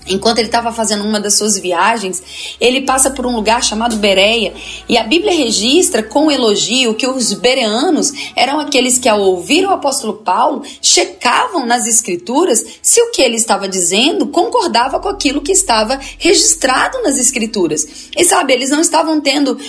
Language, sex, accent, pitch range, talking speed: Portuguese, female, Brazilian, 220-315 Hz, 170 wpm